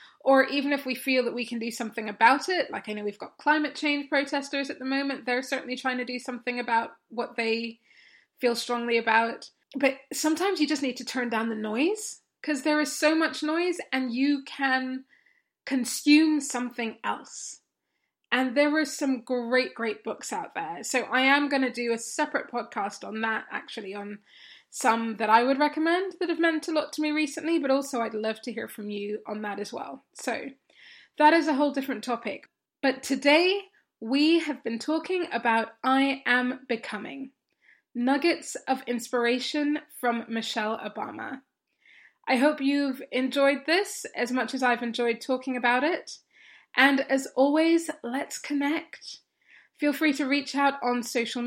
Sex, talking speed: female, 175 wpm